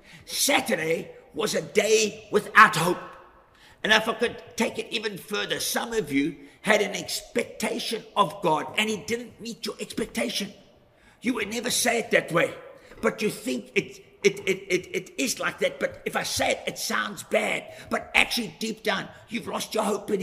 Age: 50-69